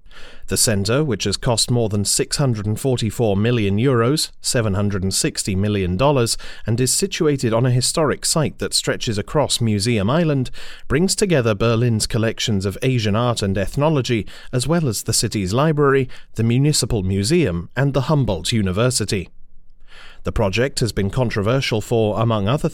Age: 30-49